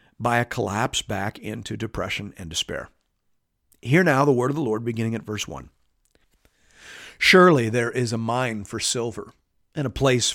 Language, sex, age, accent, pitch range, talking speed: English, male, 50-69, American, 105-125 Hz, 170 wpm